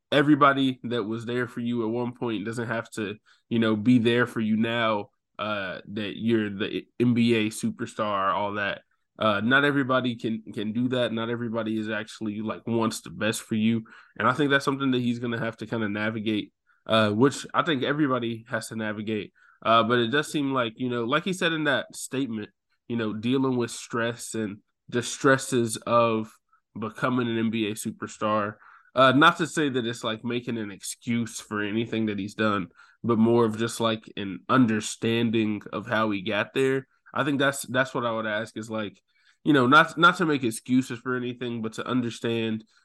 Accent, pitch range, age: American, 110-130 Hz, 20-39